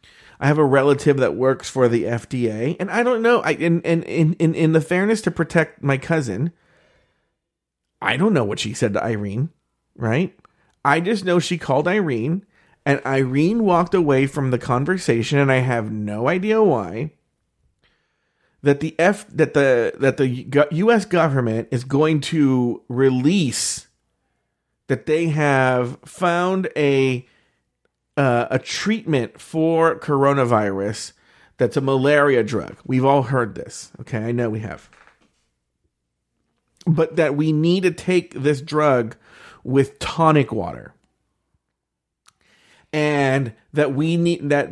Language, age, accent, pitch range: English, 40-59, American, 130-165 Hz